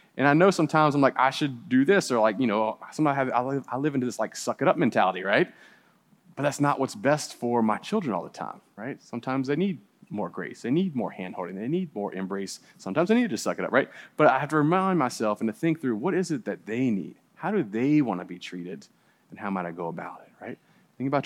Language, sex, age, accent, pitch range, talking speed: English, male, 30-49, American, 95-140 Hz, 270 wpm